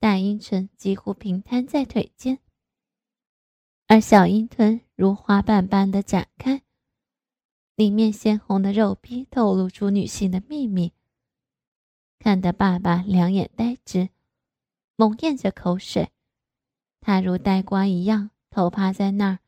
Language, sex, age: Chinese, female, 20-39